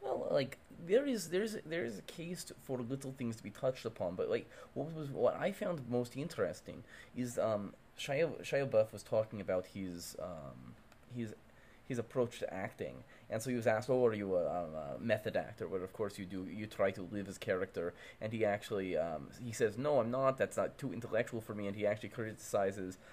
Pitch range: 95-120 Hz